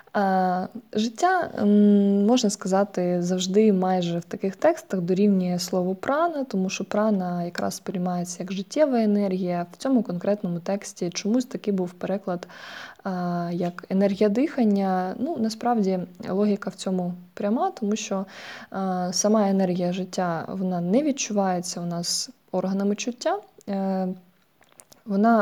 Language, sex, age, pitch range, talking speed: Ukrainian, female, 20-39, 180-220 Hz, 115 wpm